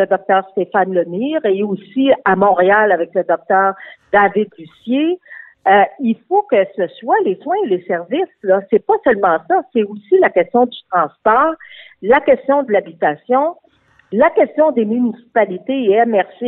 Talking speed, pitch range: 165 wpm, 190-290 Hz